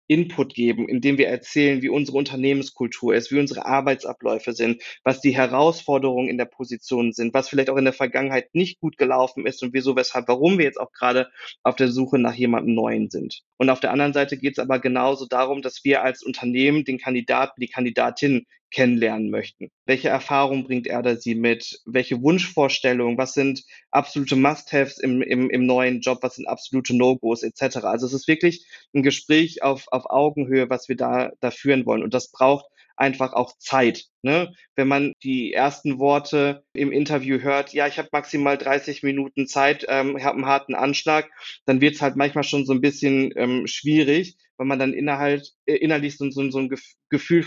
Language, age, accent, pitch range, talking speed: German, 20-39, German, 125-140 Hz, 190 wpm